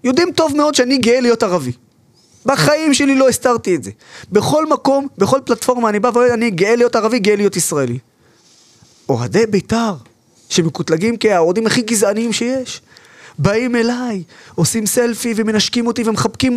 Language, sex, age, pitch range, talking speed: Hebrew, male, 20-39, 145-245 Hz, 150 wpm